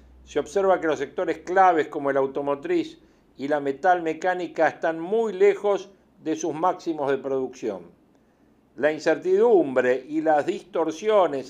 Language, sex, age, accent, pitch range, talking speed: Spanish, male, 50-69, Argentinian, 145-185 Hz, 135 wpm